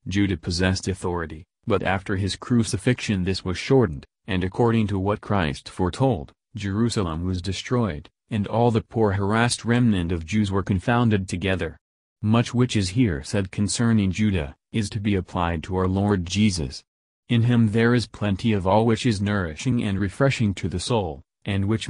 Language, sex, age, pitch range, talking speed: English, male, 40-59, 95-115 Hz, 170 wpm